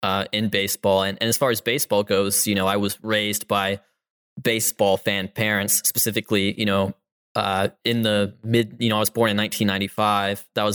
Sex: male